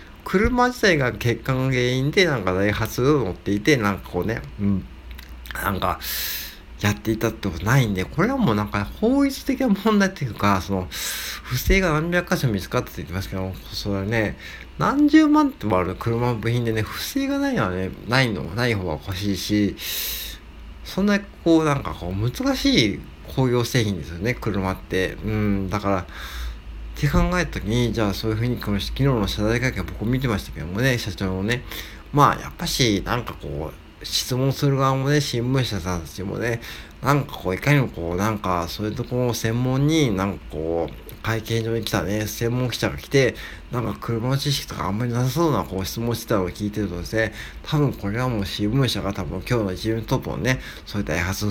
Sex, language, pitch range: male, Japanese, 95-130 Hz